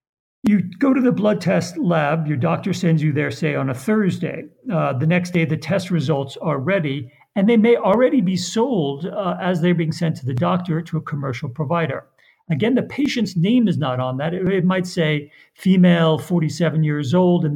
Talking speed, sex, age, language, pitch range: 205 wpm, male, 50-69, English, 150-185 Hz